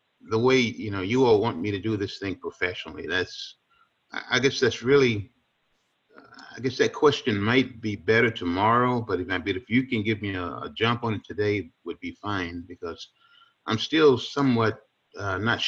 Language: English